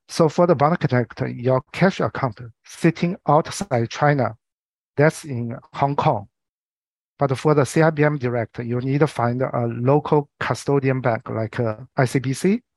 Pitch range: 115-145 Hz